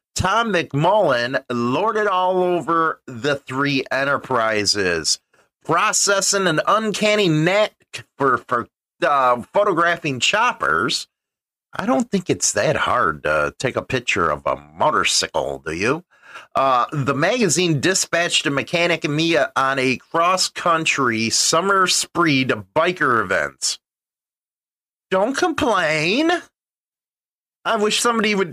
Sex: male